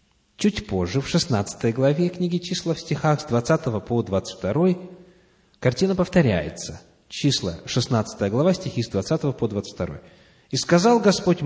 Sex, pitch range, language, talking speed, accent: male, 115-170 Hz, Russian, 135 wpm, native